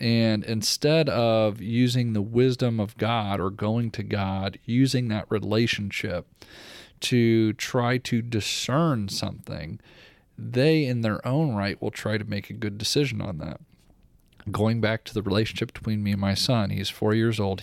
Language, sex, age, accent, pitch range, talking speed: English, male, 40-59, American, 100-125 Hz, 165 wpm